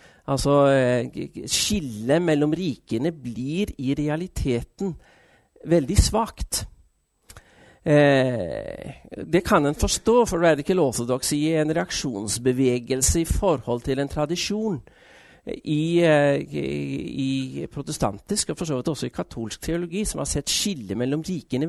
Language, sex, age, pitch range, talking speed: Danish, male, 40-59, 125-160 Hz, 110 wpm